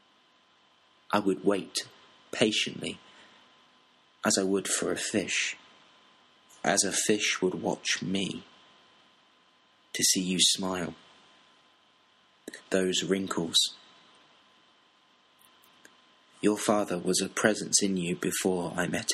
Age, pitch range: 30-49, 85-95 Hz